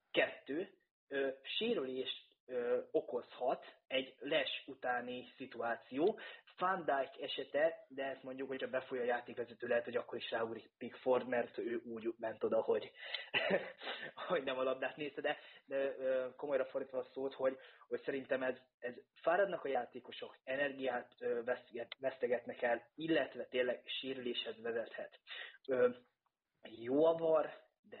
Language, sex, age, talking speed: Hungarian, male, 20-39, 120 wpm